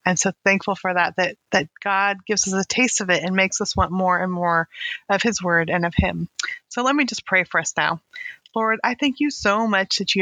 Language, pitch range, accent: English, 185-210 Hz, American